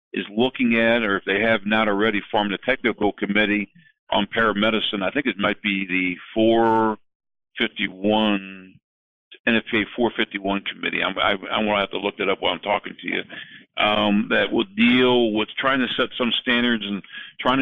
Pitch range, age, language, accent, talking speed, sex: 105-120 Hz, 50-69, English, American, 175 wpm, male